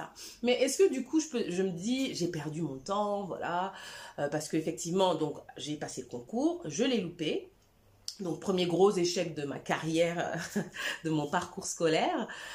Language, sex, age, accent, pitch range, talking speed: French, female, 30-49, French, 155-215 Hz, 180 wpm